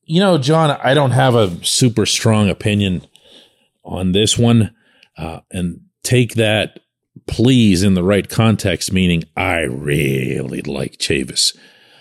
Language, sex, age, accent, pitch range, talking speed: English, male, 40-59, American, 85-115 Hz, 135 wpm